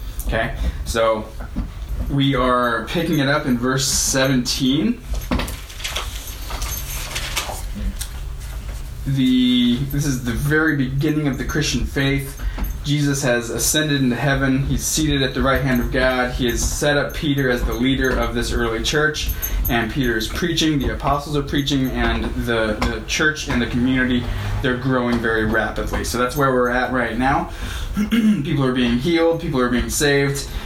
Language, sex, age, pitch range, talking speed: English, male, 20-39, 115-145 Hz, 155 wpm